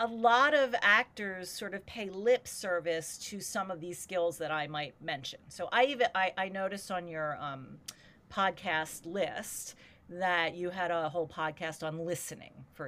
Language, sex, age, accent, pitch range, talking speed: English, female, 40-59, American, 155-205 Hz, 175 wpm